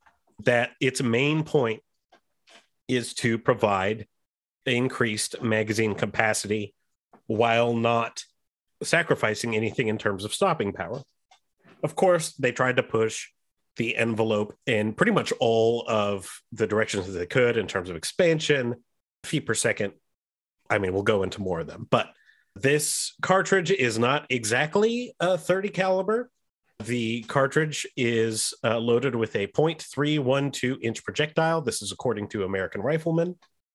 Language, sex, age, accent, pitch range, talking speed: English, male, 30-49, American, 110-150 Hz, 135 wpm